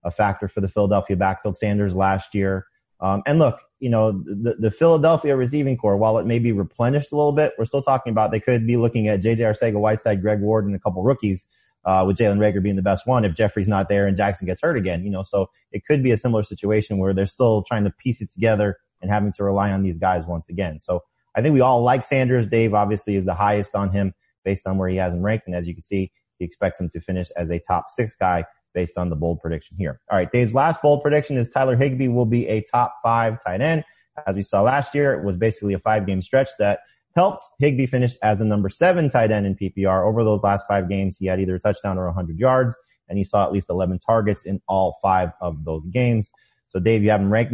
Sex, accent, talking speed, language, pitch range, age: male, American, 255 wpm, English, 95-115 Hz, 30-49